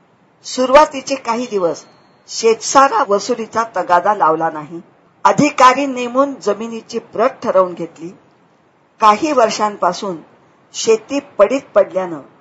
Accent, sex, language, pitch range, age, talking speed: Indian, female, English, 175-245 Hz, 50-69, 95 wpm